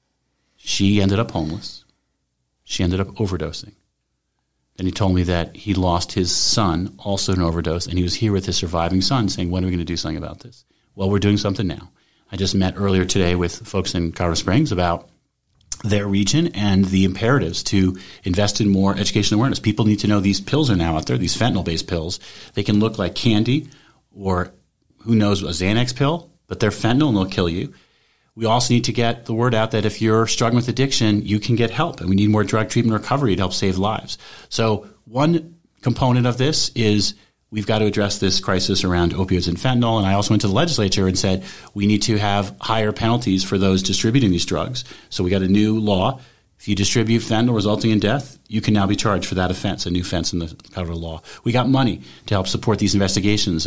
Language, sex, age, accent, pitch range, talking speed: English, male, 30-49, American, 90-115 Hz, 220 wpm